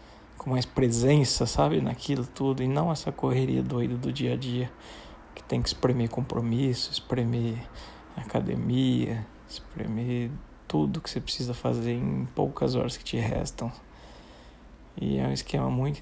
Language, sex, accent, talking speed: Portuguese, male, Brazilian, 145 wpm